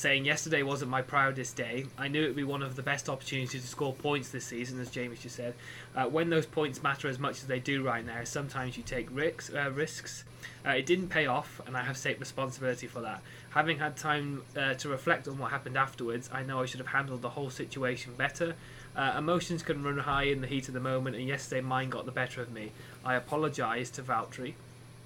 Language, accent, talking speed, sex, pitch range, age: English, British, 235 wpm, male, 125-140 Hz, 20-39